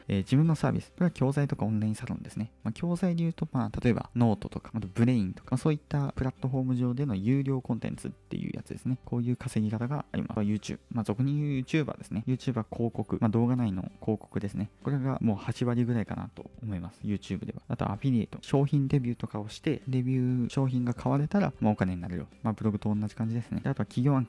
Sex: male